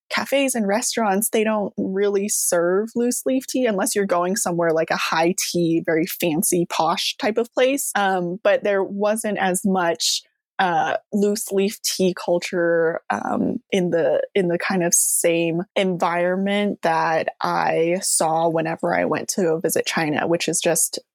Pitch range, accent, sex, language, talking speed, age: 175-220 Hz, American, female, English, 155 wpm, 20-39